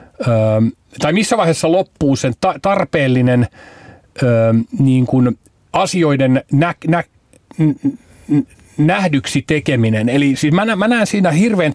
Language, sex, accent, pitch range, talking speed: Finnish, male, native, 125-155 Hz, 75 wpm